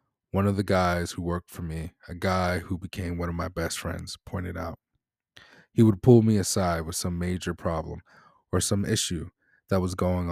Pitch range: 85-105 Hz